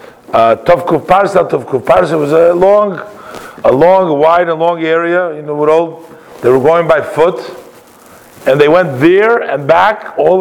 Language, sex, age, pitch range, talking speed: English, male, 50-69, 145-185 Hz, 155 wpm